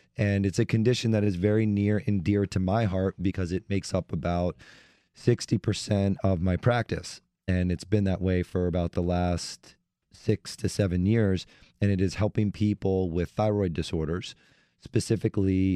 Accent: American